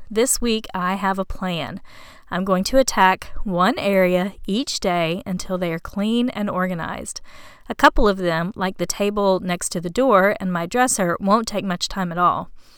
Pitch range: 180-220 Hz